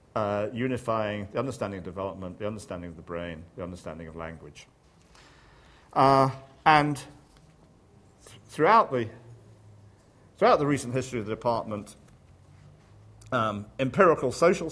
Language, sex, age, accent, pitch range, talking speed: English, male, 50-69, British, 85-110 Hz, 115 wpm